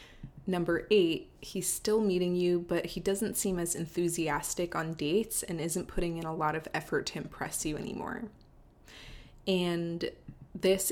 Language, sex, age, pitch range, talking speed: English, female, 20-39, 165-190 Hz, 155 wpm